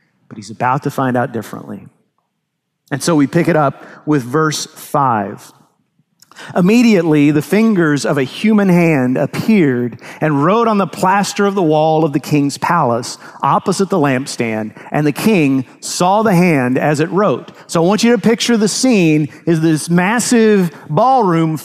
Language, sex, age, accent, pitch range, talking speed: English, male, 40-59, American, 140-185 Hz, 165 wpm